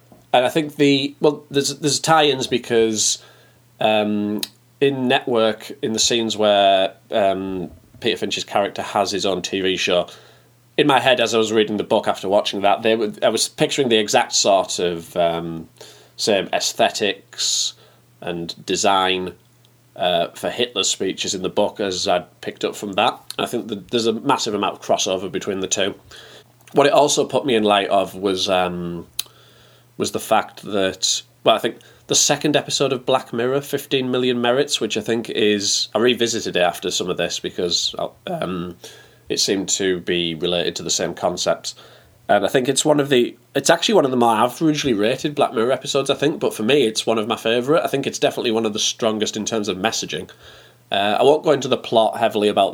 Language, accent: English, British